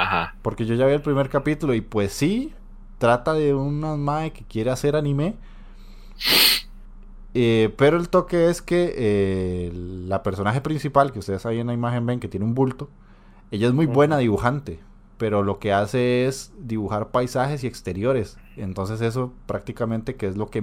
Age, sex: 20-39, male